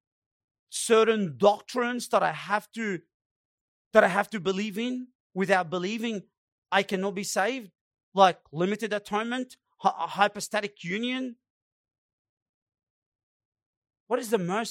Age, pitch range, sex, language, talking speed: 40-59, 175-235 Hz, male, English, 110 wpm